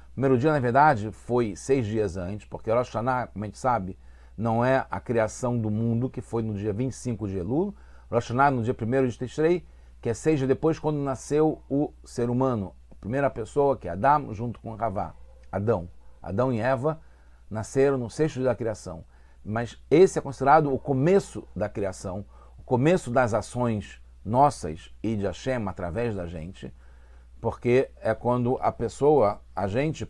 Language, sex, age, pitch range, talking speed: English, male, 40-59, 85-130 Hz, 180 wpm